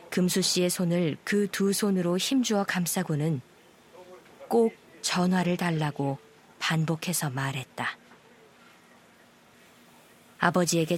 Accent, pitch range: native, 160-195 Hz